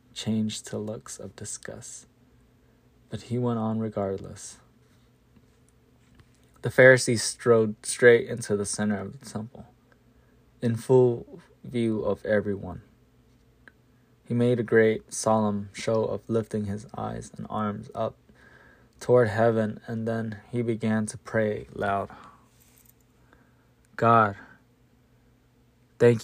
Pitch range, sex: 105-120 Hz, male